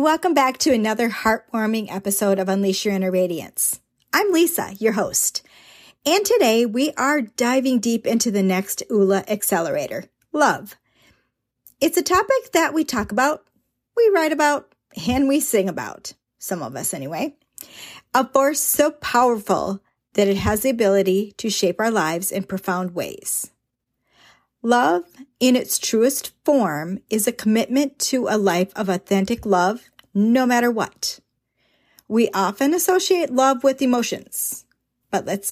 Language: English